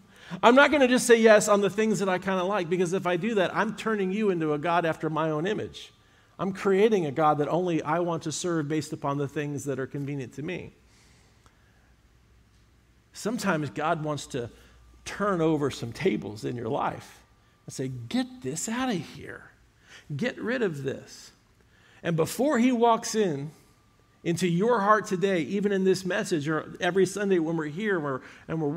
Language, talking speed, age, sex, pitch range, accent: English, 190 wpm, 50-69, male, 130-185 Hz, American